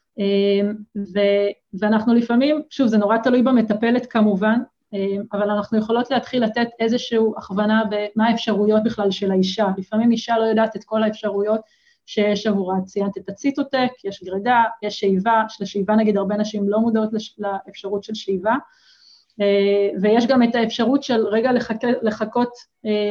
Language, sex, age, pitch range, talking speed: Hebrew, female, 30-49, 200-235 Hz, 165 wpm